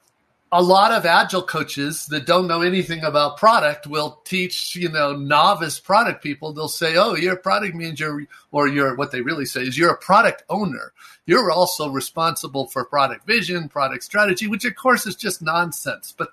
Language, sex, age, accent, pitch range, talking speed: English, male, 50-69, American, 145-190 Hz, 185 wpm